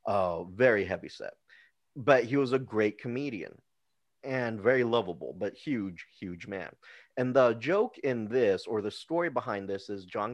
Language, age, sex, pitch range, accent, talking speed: English, 30-49, male, 95-125 Hz, American, 170 wpm